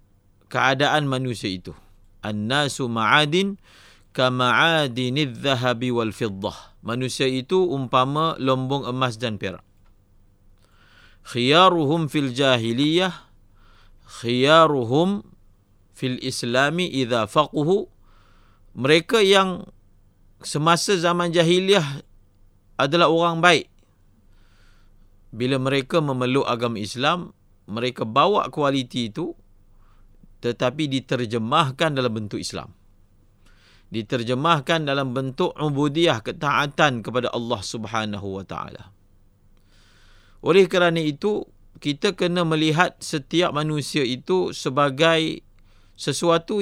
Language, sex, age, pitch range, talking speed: English, male, 50-69, 100-155 Hz, 85 wpm